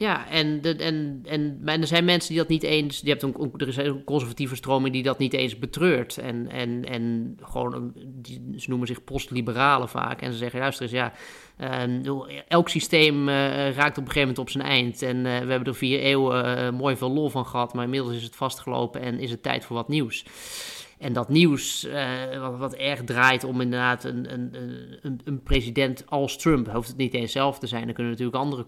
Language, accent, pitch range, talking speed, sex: Dutch, Dutch, 120-140 Hz, 205 wpm, male